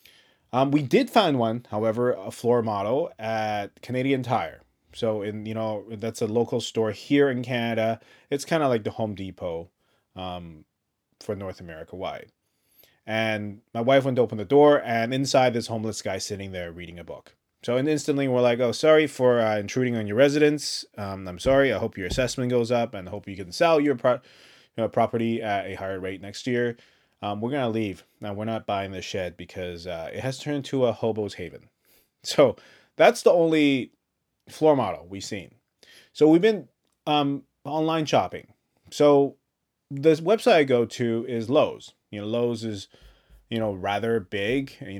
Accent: American